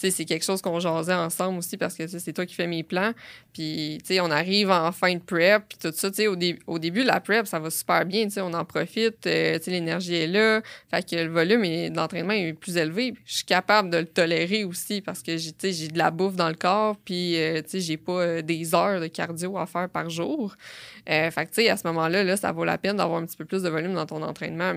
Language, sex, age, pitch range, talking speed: French, female, 20-39, 165-200 Hz, 280 wpm